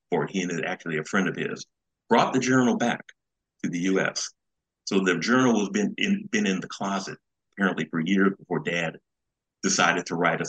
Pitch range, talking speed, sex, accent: 85-100 Hz, 200 wpm, male, American